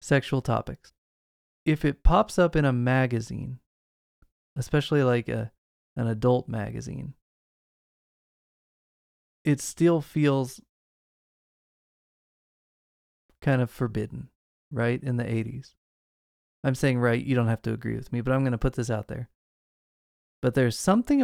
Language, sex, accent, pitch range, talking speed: English, male, American, 115-145 Hz, 130 wpm